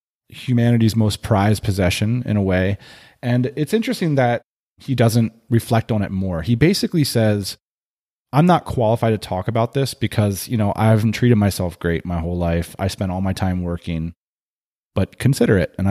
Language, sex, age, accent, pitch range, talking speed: English, male, 30-49, American, 105-160 Hz, 180 wpm